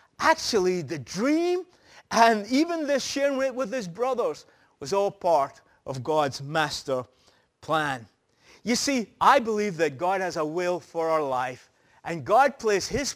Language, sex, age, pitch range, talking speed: English, male, 30-49, 175-240 Hz, 150 wpm